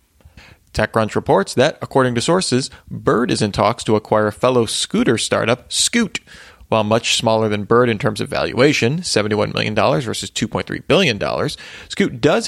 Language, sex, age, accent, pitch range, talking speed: English, male, 30-49, American, 105-135 Hz, 160 wpm